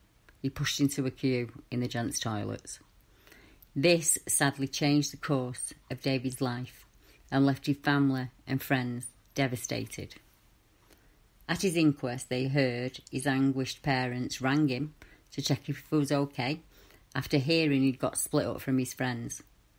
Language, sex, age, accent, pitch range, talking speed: English, female, 40-59, British, 130-150 Hz, 150 wpm